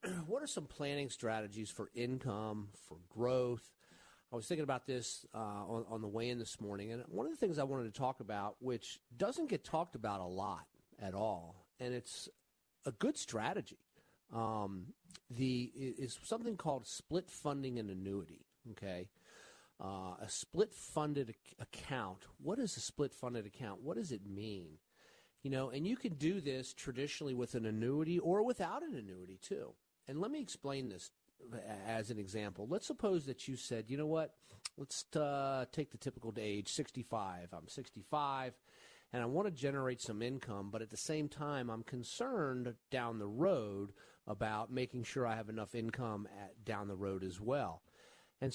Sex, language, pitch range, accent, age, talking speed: male, English, 105-140 Hz, American, 40-59, 175 wpm